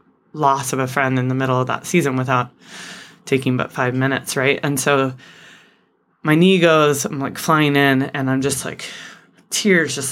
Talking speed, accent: 185 wpm, American